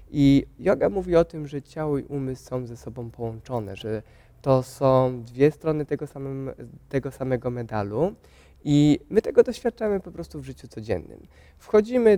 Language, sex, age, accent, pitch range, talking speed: Polish, male, 20-39, native, 120-155 Hz, 155 wpm